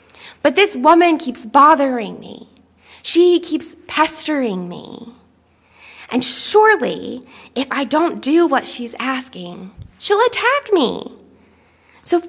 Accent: American